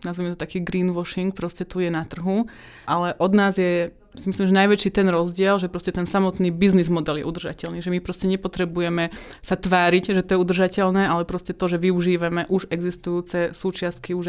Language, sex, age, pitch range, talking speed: Slovak, female, 20-39, 170-190 Hz, 190 wpm